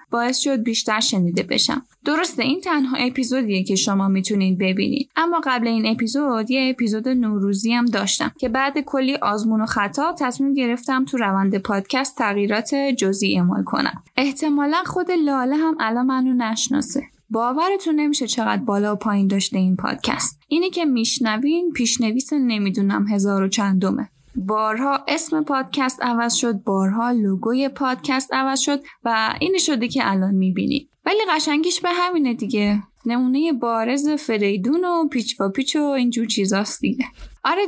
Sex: female